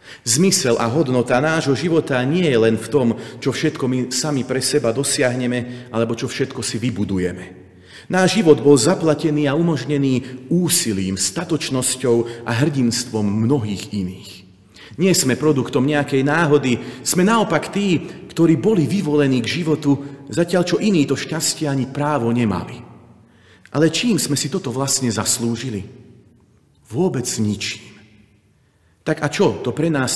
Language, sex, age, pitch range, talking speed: Slovak, male, 40-59, 115-155 Hz, 135 wpm